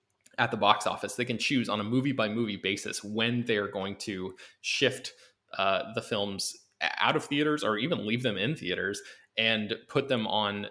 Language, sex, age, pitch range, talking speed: English, male, 20-39, 100-120 Hz, 185 wpm